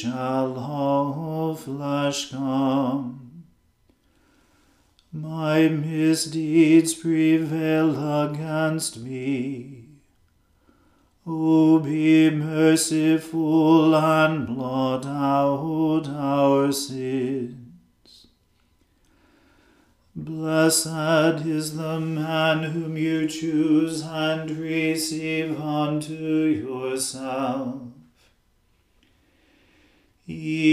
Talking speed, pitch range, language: 60 wpm, 140-160 Hz, English